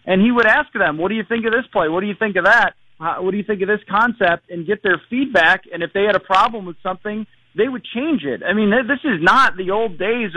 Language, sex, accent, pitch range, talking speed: English, male, American, 165-200 Hz, 285 wpm